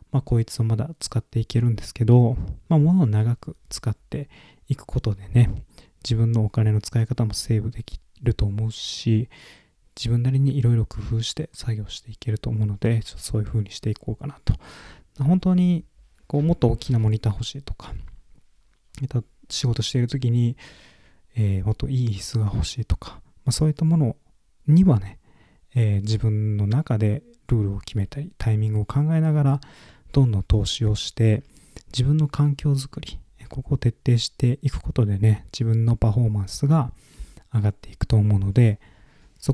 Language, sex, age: Japanese, male, 20-39